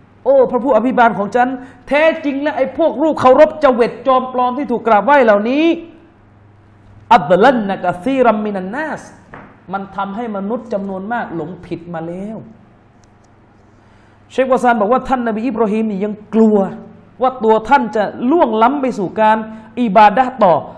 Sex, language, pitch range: male, Thai, 175-250 Hz